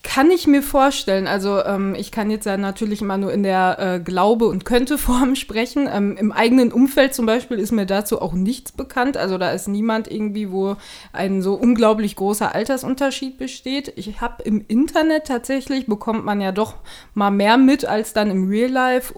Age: 20-39